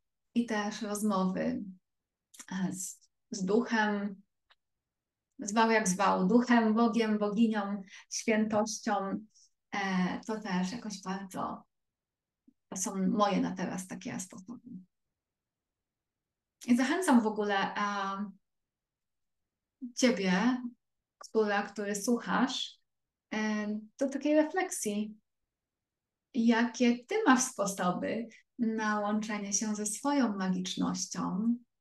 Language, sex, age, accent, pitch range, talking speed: Polish, female, 20-39, native, 195-240 Hz, 90 wpm